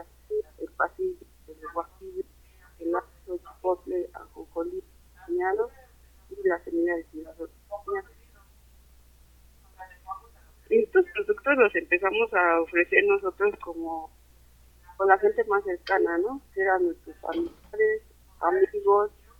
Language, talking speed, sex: Spanish, 110 wpm, female